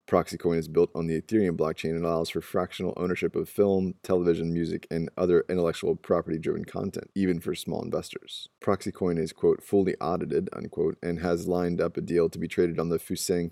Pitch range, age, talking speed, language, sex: 85-95 Hz, 20-39, 195 wpm, English, male